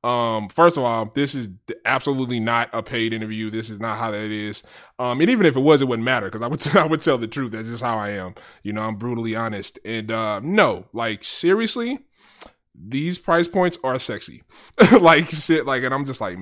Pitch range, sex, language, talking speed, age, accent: 110-155 Hz, male, English, 225 wpm, 20-39, American